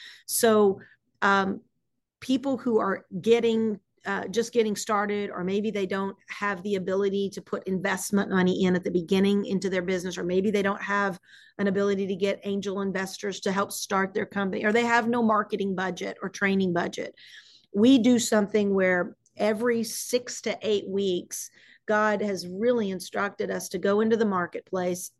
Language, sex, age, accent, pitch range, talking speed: English, female, 40-59, American, 190-215 Hz, 170 wpm